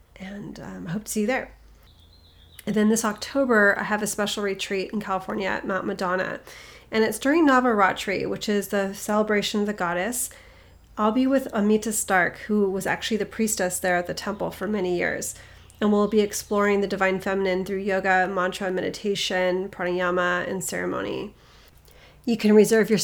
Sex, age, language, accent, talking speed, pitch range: female, 30-49, English, American, 175 wpm, 185-215 Hz